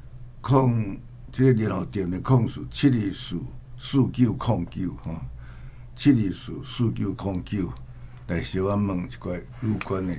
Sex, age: male, 60-79